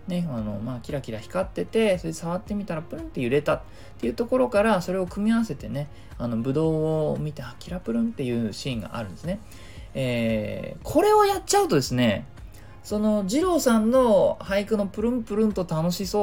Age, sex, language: 20-39, male, Japanese